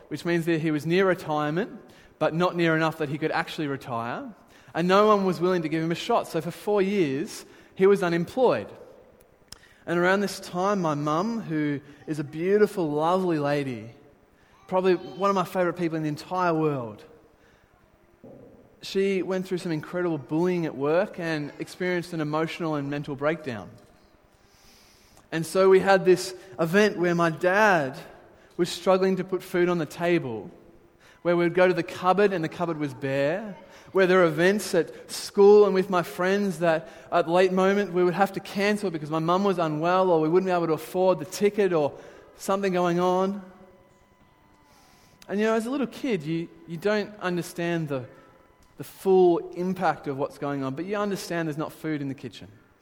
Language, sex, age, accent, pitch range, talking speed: English, male, 20-39, Australian, 150-185 Hz, 185 wpm